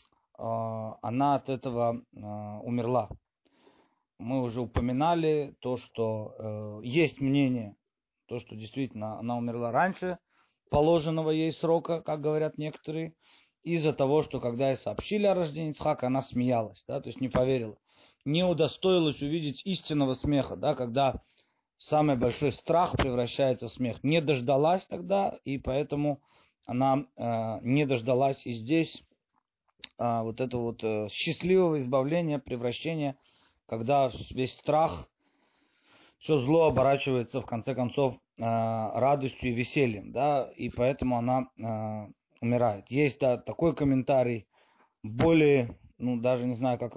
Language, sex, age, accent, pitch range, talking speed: Russian, male, 30-49, native, 120-150 Hz, 125 wpm